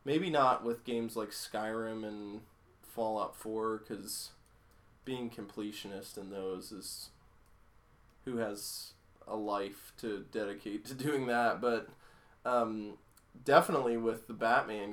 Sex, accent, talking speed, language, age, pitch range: male, American, 120 wpm, English, 20-39, 105-125 Hz